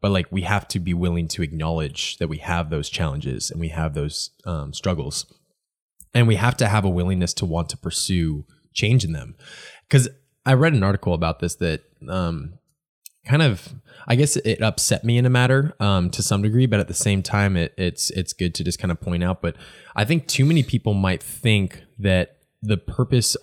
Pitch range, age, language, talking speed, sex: 85-110 Hz, 20-39, English, 210 wpm, male